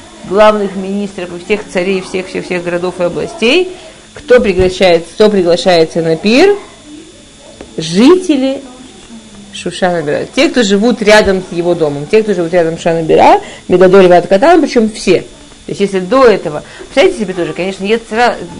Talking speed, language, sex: 150 wpm, Russian, female